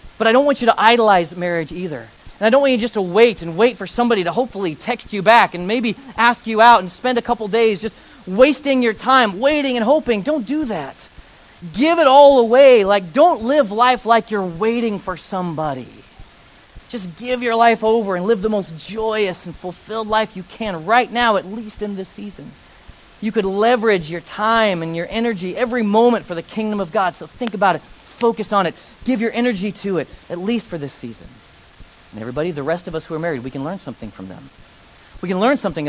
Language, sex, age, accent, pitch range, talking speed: English, male, 40-59, American, 170-230 Hz, 220 wpm